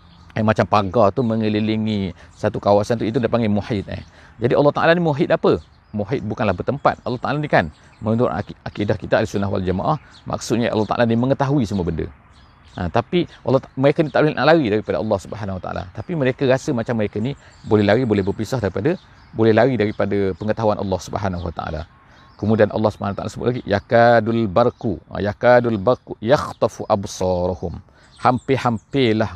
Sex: male